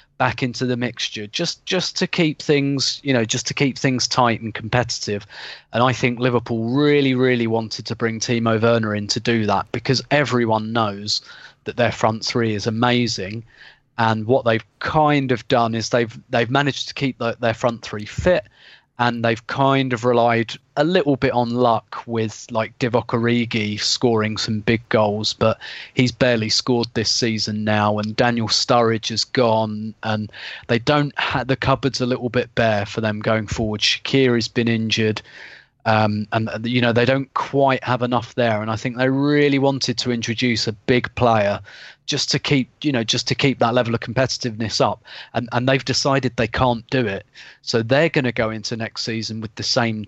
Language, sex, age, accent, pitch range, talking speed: English, male, 30-49, British, 110-130 Hz, 190 wpm